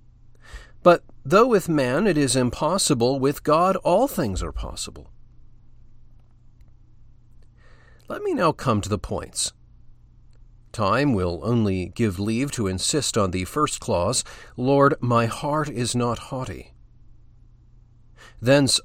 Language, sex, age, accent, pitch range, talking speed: English, male, 40-59, American, 115-140 Hz, 120 wpm